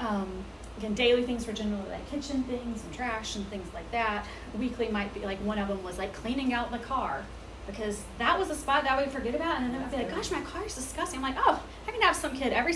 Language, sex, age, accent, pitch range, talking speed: English, female, 30-49, American, 225-300 Hz, 265 wpm